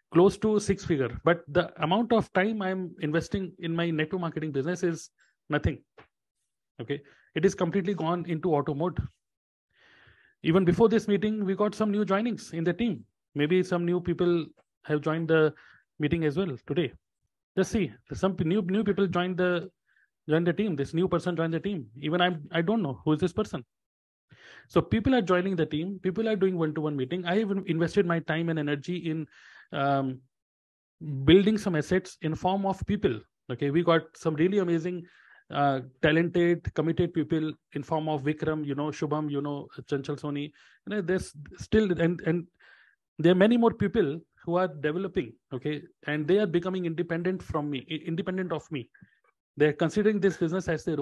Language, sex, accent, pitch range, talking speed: Hindi, male, native, 150-185 Hz, 185 wpm